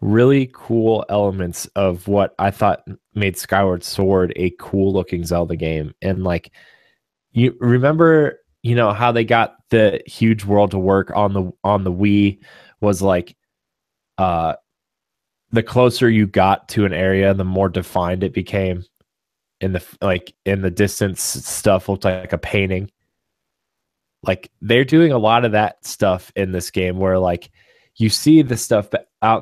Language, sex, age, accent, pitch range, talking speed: English, male, 20-39, American, 95-110 Hz, 160 wpm